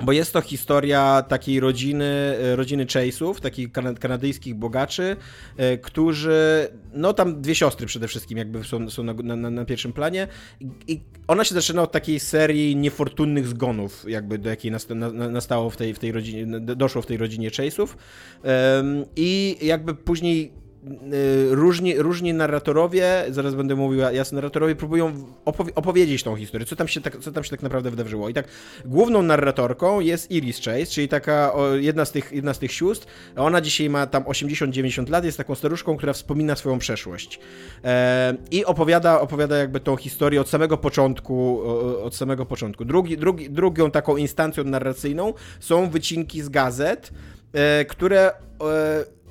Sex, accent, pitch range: male, native, 125-155 Hz